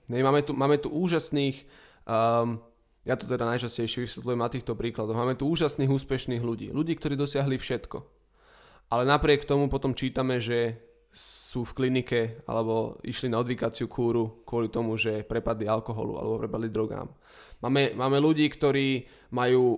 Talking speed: 155 wpm